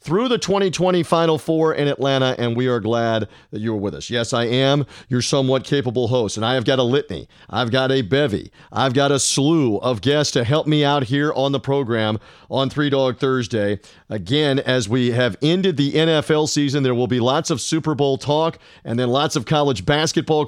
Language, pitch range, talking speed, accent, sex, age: English, 130-160 Hz, 210 wpm, American, male, 40-59